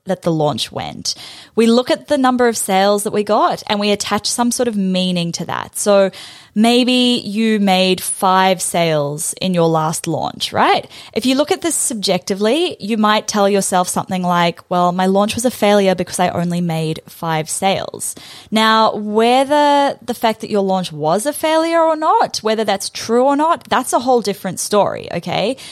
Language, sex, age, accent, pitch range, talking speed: English, female, 10-29, Australian, 185-250 Hz, 190 wpm